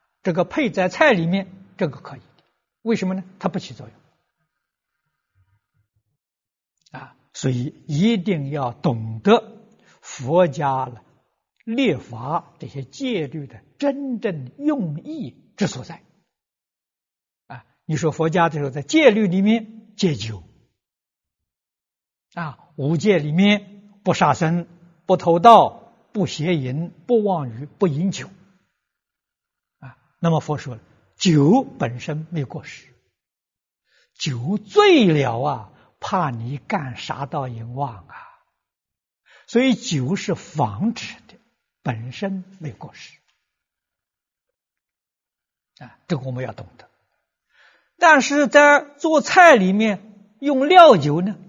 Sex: male